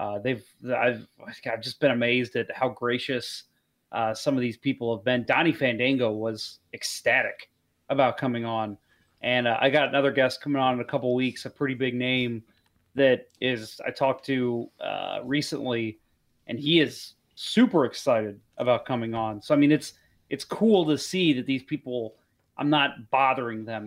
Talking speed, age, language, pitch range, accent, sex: 180 wpm, 30-49, English, 125-160 Hz, American, male